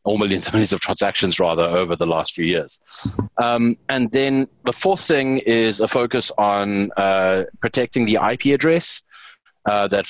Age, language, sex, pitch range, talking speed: 20-39, English, male, 95-115 Hz, 170 wpm